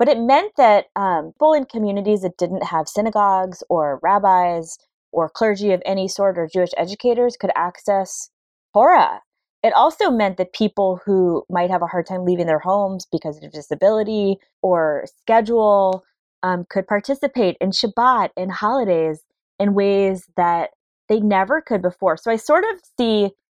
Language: English